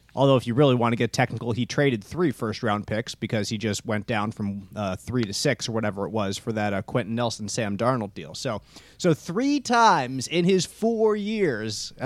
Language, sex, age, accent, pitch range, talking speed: English, male, 30-49, American, 120-160 Hz, 210 wpm